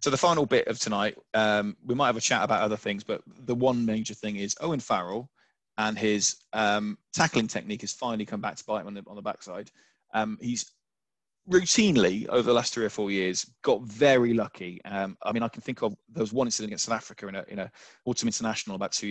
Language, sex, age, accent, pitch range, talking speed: English, male, 20-39, British, 100-120 Hz, 235 wpm